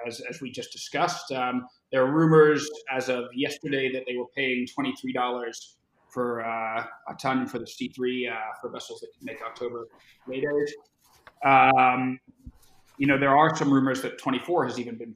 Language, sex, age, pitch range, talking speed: English, male, 30-49, 120-140 Hz, 175 wpm